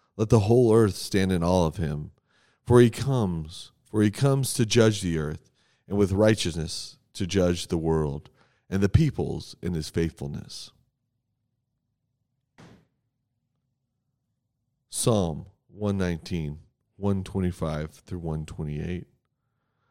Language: English